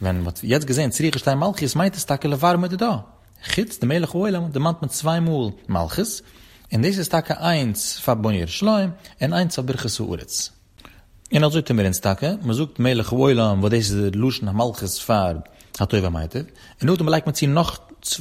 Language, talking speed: Hebrew, 210 wpm